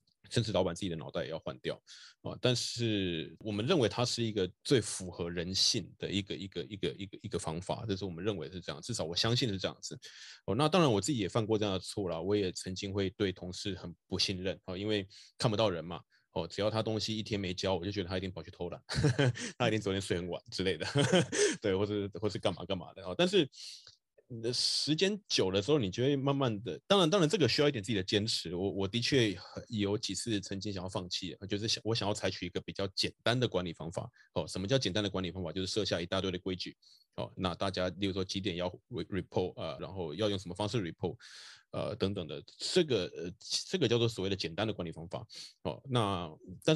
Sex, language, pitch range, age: male, Chinese, 90-110 Hz, 20-39